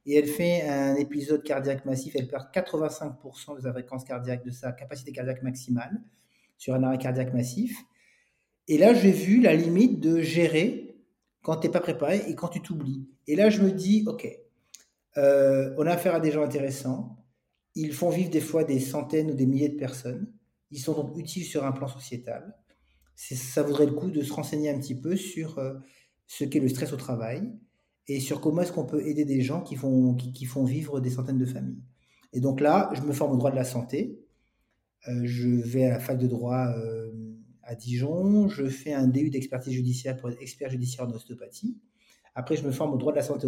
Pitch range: 125-155 Hz